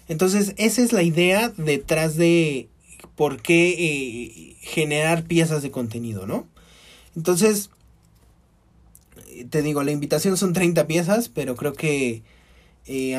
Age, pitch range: 20-39, 135-185 Hz